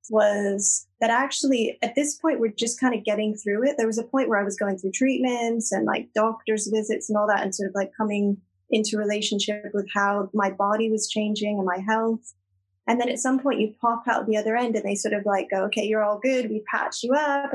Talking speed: 245 wpm